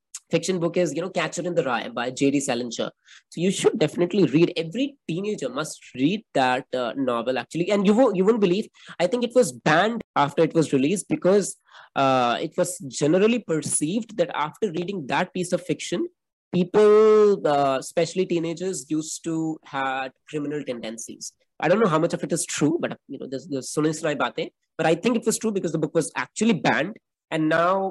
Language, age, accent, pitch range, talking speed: English, 20-39, Indian, 150-205 Hz, 200 wpm